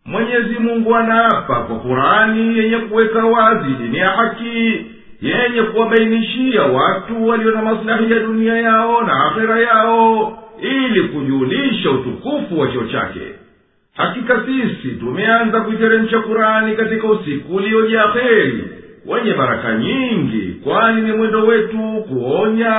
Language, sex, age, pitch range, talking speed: Swahili, male, 50-69, 215-230 Hz, 115 wpm